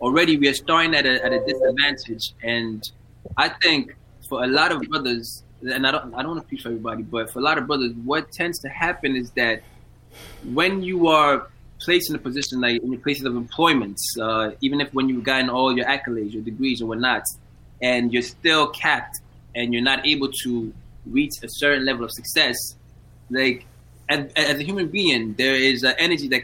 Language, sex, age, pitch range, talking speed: English, male, 20-39, 115-145 Hz, 205 wpm